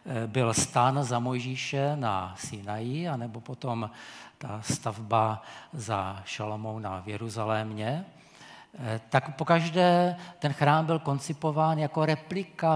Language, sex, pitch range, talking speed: Czech, male, 115-155 Hz, 105 wpm